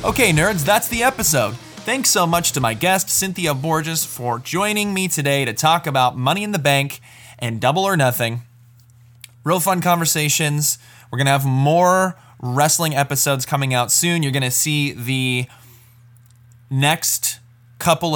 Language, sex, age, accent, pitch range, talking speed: English, male, 20-39, American, 125-175 Hz, 160 wpm